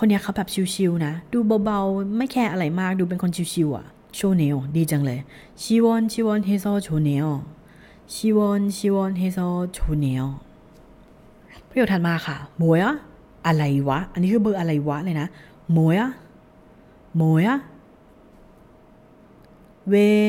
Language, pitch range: Korean, 165-215 Hz